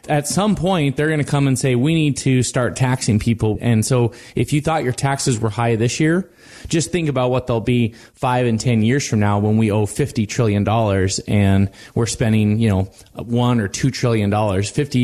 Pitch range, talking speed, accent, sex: 110-135 Hz, 210 wpm, American, male